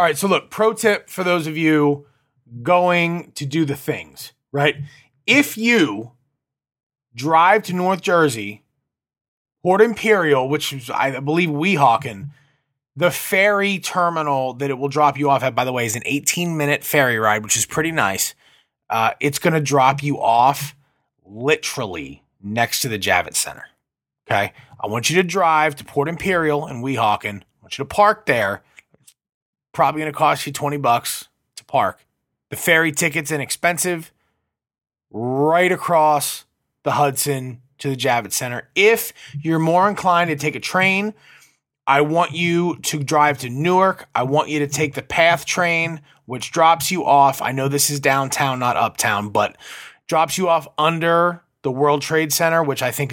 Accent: American